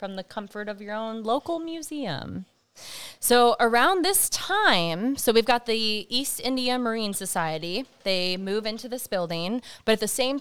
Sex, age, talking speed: female, 20-39, 165 wpm